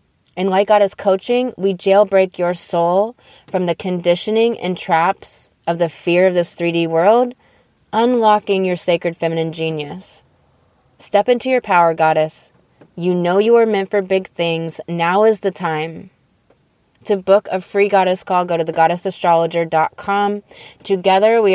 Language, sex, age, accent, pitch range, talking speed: English, female, 20-39, American, 170-205 Hz, 150 wpm